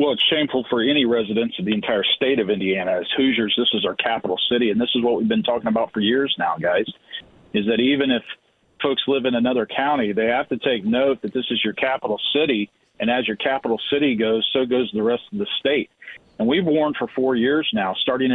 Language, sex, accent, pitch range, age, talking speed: English, male, American, 125-155 Hz, 40-59, 235 wpm